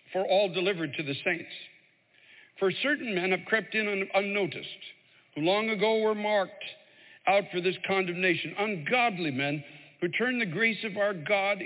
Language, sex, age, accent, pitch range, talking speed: English, male, 60-79, American, 170-210 Hz, 160 wpm